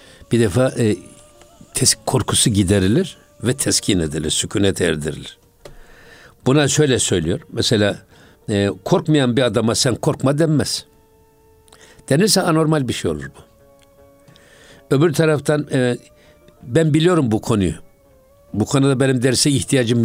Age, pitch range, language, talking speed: 60-79, 105-145 Hz, Turkish, 115 wpm